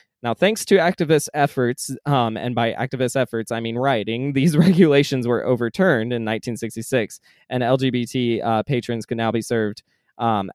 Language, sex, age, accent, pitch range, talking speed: English, male, 20-39, American, 115-140 Hz, 160 wpm